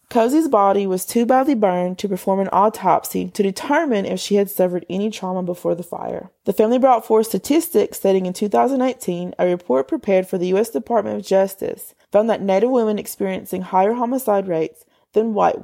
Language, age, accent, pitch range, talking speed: English, 20-39, American, 185-225 Hz, 185 wpm